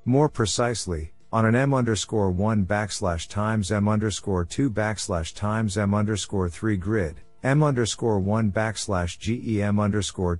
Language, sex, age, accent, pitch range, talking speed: English, male, 50-69, American, 95-115 Hz, 140 wpm